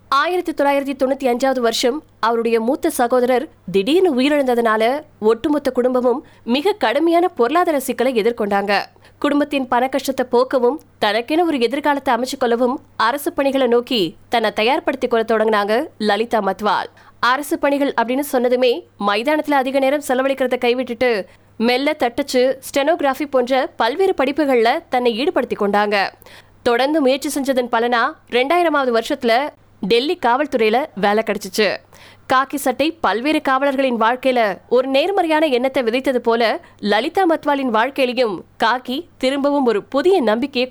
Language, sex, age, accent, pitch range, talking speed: Tamil, female, 20-39, native, 235-290 Hz, 60 wpm